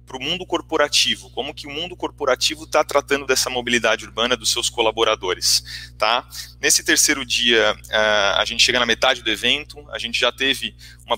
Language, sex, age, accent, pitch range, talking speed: Portuguese, male, 30-49, Brazilian, 110-125 Hz, 175 wpm